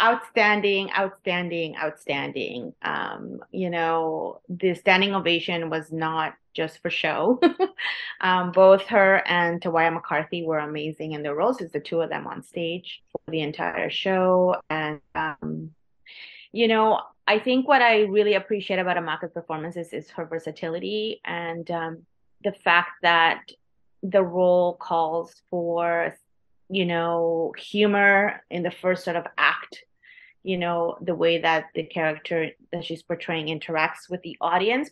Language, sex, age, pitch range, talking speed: English, female, 30-49, 165-200 Hz, 145 wpm